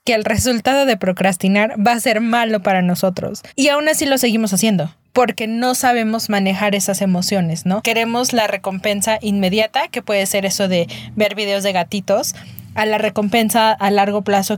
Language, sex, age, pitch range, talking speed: Spanish, female, 20-39, 190-225 Hz, 175 wpm